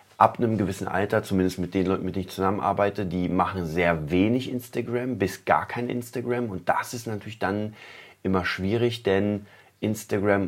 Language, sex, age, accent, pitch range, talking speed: German, male, 30-49, German, 90-110 Hz, 170 wpm